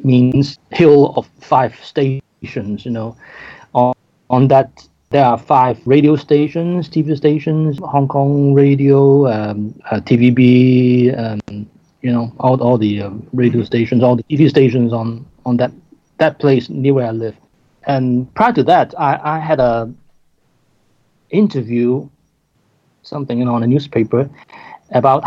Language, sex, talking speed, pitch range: English, male, 145 wpm, 120-150 Hz